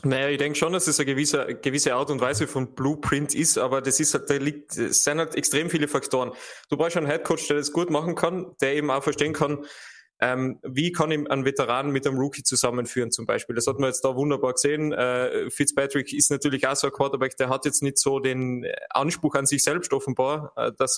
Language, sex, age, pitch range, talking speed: German, male, 20-39, 130-150 Hz, 230 wpm